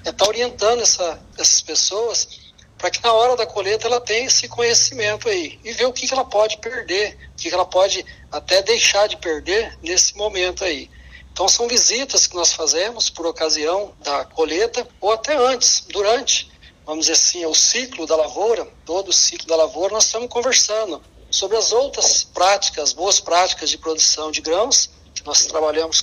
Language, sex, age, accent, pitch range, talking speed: Portuguese, male, 60-79, Brazilian, 160-225 Hz, 180 wpm